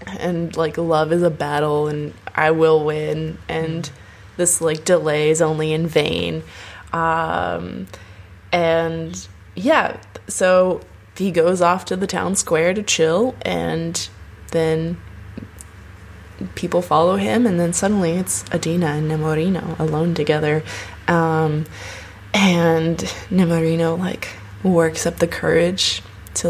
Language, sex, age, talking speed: English, female, 20-39, 120 wpm